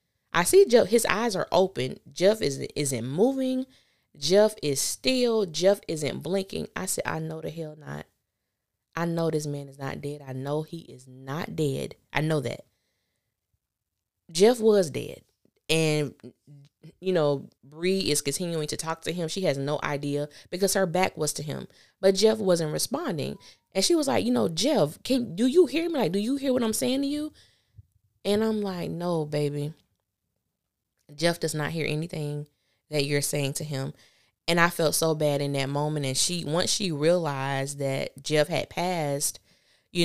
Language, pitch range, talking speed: English, 140-210 Hz, 185 wpm